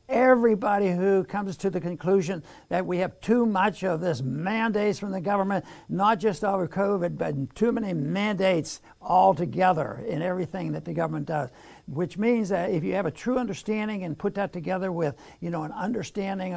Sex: male